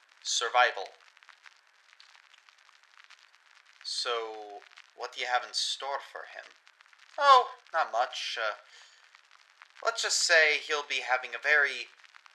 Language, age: English, 30-49